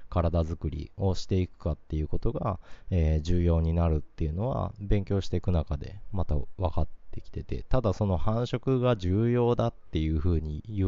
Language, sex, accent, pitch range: Japanese, male, native, 80-110 Hz